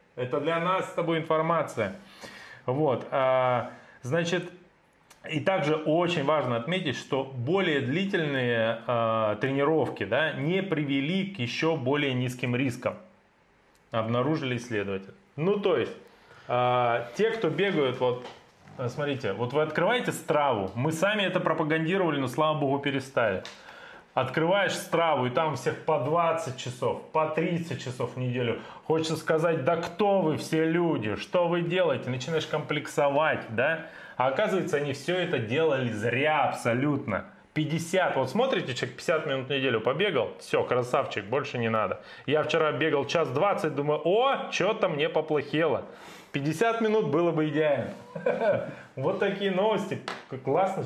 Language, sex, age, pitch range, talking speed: Russian, male, 20-39, 130-170 Hz, 140 wpm